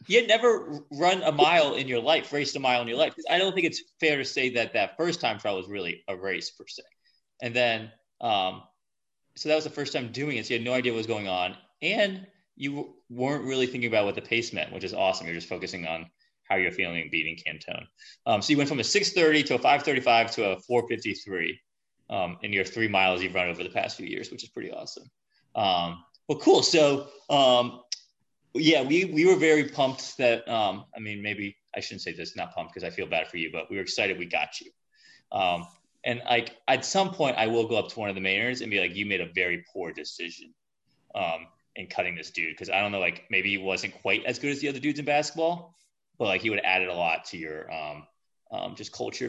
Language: English